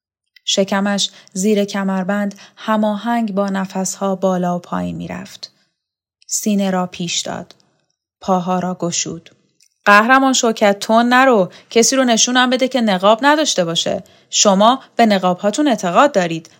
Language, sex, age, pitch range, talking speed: Persian, female, 10-29, 190-235 Hz, 125 wpm